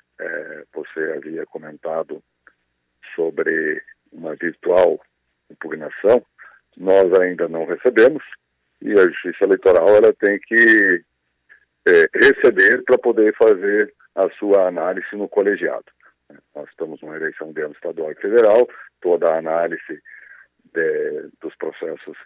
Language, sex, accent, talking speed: Portuguese, male, Brazilian, 115 wpm